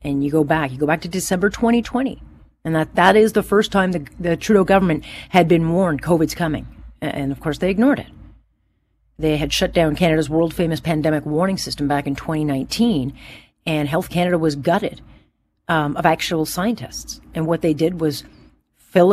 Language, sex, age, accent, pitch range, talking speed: English, female, 40-59, American, 155-215 Hz, 185 wpm